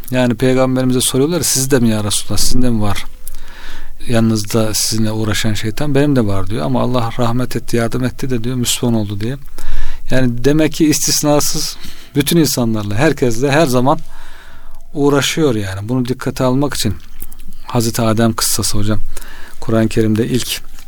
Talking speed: 145 wpm